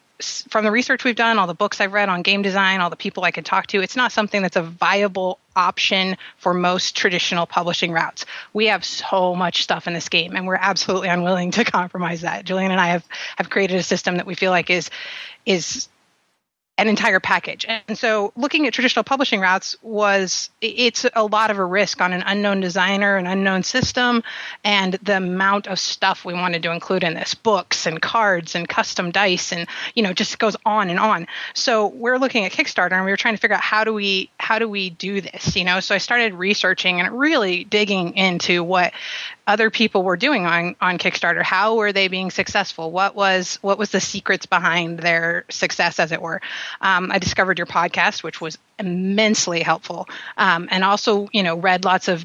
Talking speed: 210 wpm